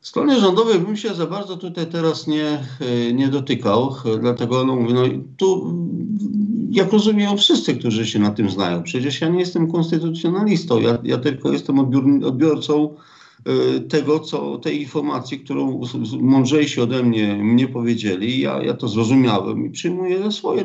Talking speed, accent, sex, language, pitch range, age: 150 wpm, native, male, Polish, 110-155 Hz, 50-69